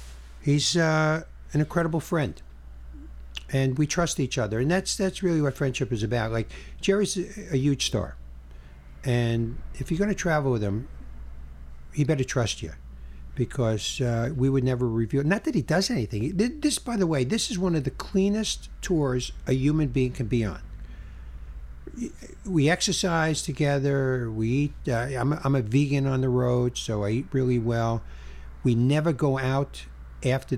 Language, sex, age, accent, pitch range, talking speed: English, male, 60-79, American, 105-145 Hz, 170 wpm